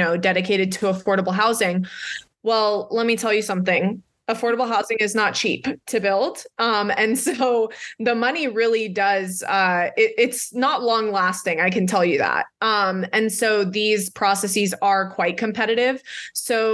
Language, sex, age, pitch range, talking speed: English, female, 20-39, 185-215 Hz, 160 wpm